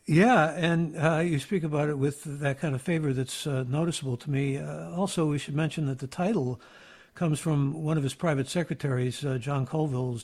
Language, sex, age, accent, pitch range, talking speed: English, male, 60-79, American, 135-170 Hz, 205 wpm